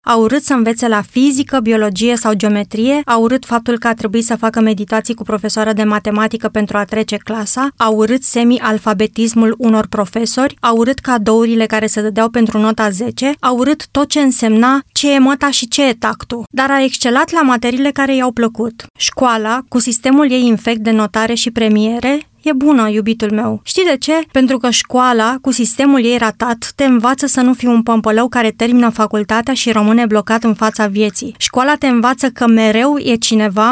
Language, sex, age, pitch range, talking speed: Romanian, female, 30-49, 220-255 Hz, 190 wpm